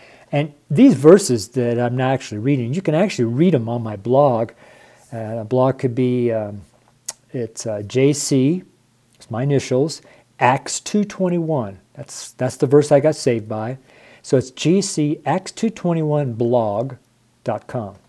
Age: 50-69